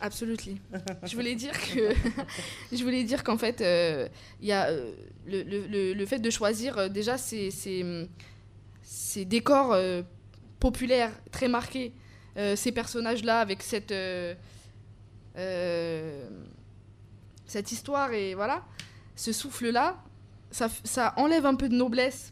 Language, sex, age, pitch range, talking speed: English, female, 20-39, 175-245 Hz, 130 wpm